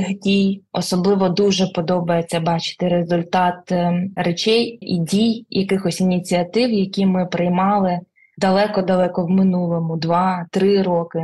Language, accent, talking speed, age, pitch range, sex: Ukrainian, native, 100 wpm, 20-39, 180-205 Hz, female